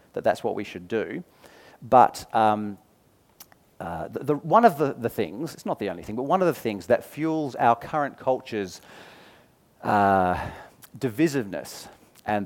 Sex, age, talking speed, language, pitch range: male, 40-59, 155 wpm, English, 105-155 Hz